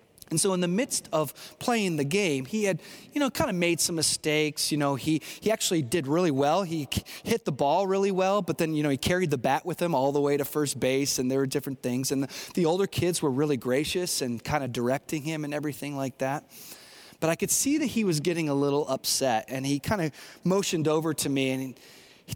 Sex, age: male, 30-49